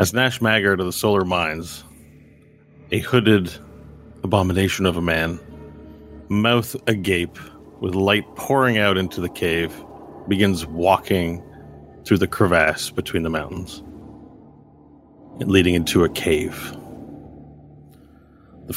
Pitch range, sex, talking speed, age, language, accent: 80-105 Hz, male, 115 wpm, 30-49, English, American